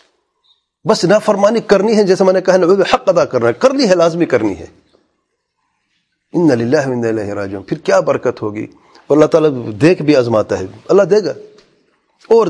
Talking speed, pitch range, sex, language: 180 wpm, 115-175 Hz, male, English